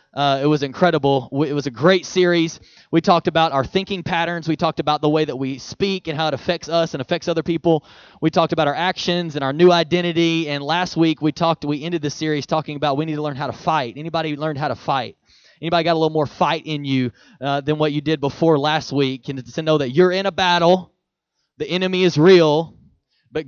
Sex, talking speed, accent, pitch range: male, 240 wpm, American, 145-175 Hz